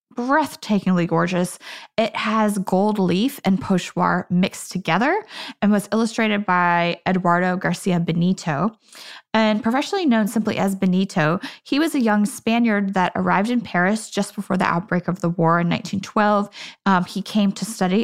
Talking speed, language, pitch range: 155 wpm, English, 185-235 Hz